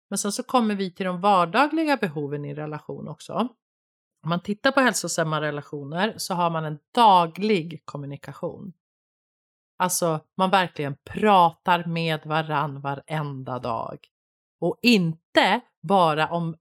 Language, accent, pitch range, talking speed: Swedish, native, 165-210 Hz, 130 wpm